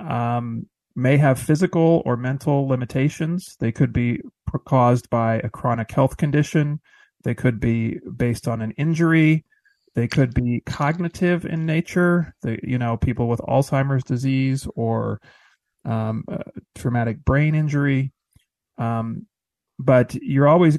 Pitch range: 120-150 Hz